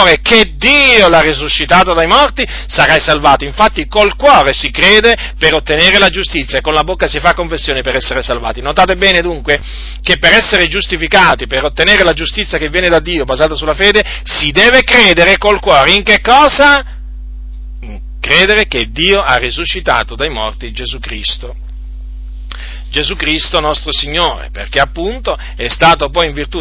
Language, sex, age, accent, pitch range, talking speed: Italian, male, 40-59, native, 140-185 Hz, 165 wpm